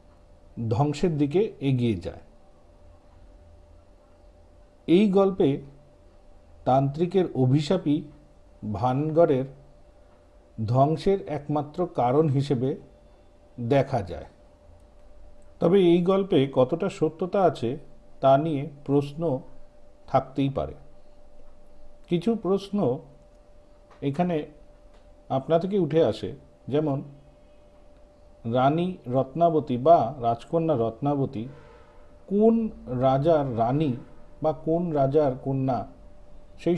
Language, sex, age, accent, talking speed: Bengali, male, 50-69, native, 75 wpm